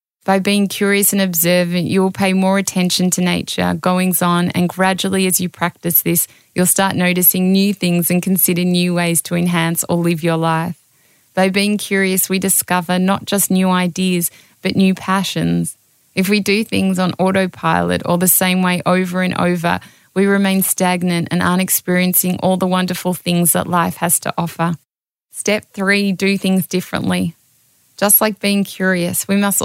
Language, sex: English, female